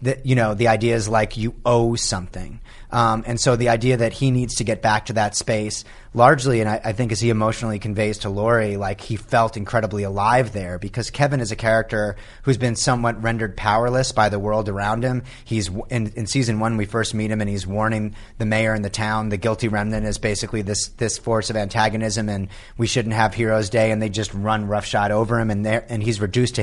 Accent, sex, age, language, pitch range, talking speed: American, male, 30-49, English, 105-120 Hz, 230 wpm